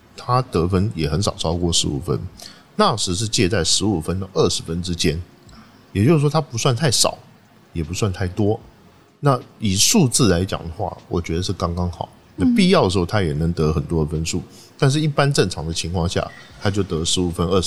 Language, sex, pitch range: Chinese, male, 85-120 Hz